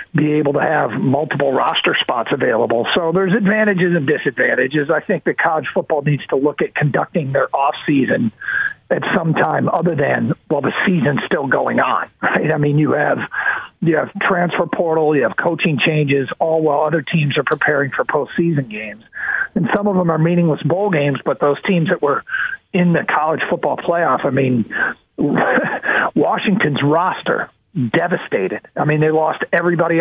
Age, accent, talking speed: 50-69, American, 175 wpm